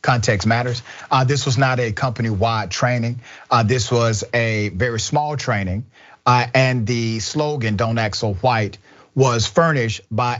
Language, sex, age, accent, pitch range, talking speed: English, male, 40-59, American, 105-135 Hz, 155 wpm